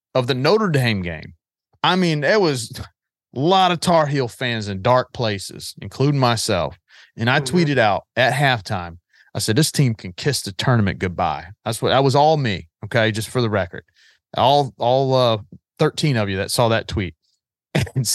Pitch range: 110-145 Hz